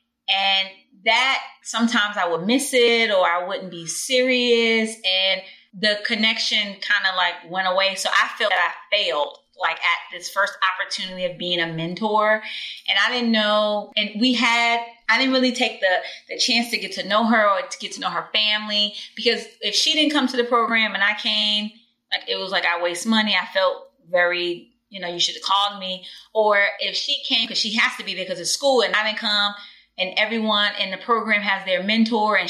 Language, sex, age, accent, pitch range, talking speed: English, female, 20-39, American, 190-235 Hz, 210 wpm